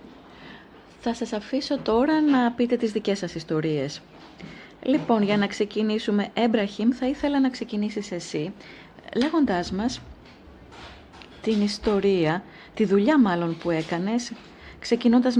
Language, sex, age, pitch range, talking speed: Greek, female, 30-49, 185-225 Hz, 115 wpm